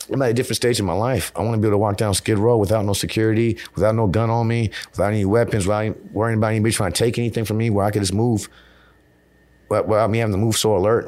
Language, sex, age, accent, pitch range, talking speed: English, male, 30-49, American, 90-110 Hz, 275 wpm